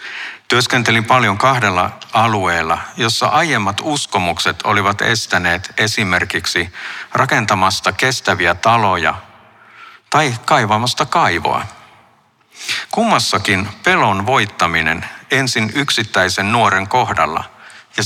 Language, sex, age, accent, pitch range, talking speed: Finnish, male, 60-79, native, 100-125 Hz, 80 wpm